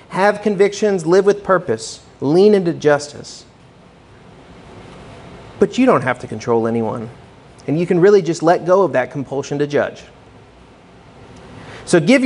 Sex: male